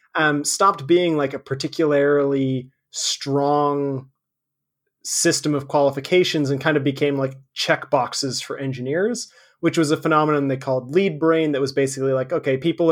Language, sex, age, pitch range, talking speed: English, male, 30-49, 135-170 Hz, 155 wpm